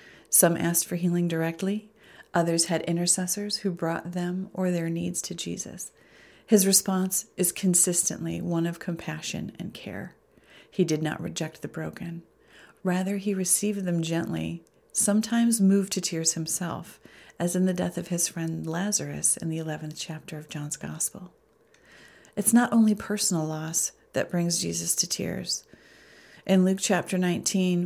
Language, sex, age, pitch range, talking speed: English, female, 40-59, 170-190 Hz, 150 wpm